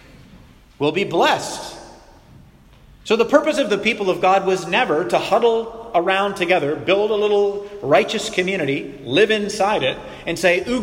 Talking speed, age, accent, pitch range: 155 wpm, 40-59, American, 165-205 Hz